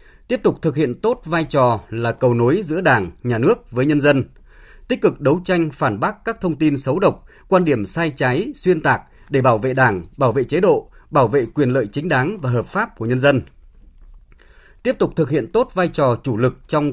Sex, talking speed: male, 225 wpm